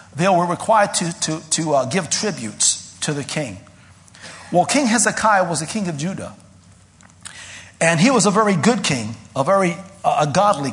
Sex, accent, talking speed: male, American, 180 wpm